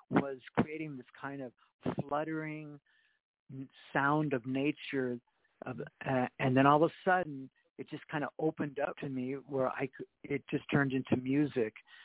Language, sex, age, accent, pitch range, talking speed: English, male, 50-69, American, 125-150 Hz, 155 wpm